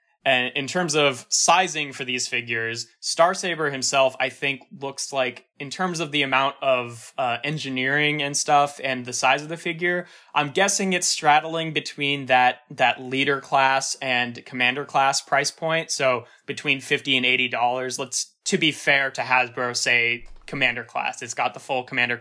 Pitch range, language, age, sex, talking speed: 125-155 Hz, English, 20-39, male, 175 wpm